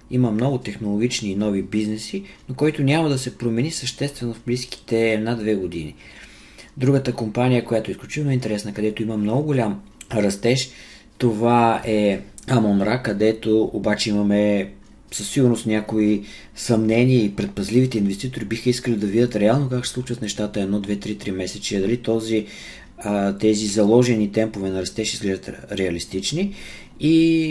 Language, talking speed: Bulgarian, 135 wpm